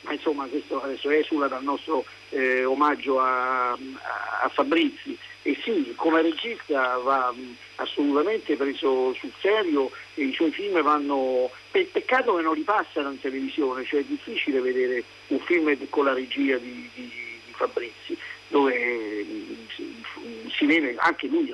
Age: 50-69